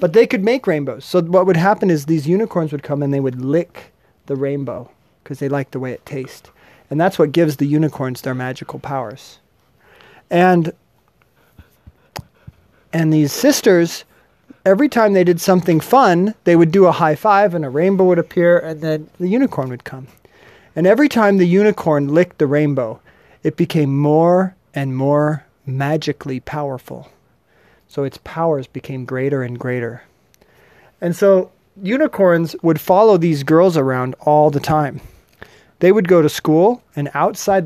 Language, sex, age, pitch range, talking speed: English, male, 40-59, 140-175 Hz, 165 wpm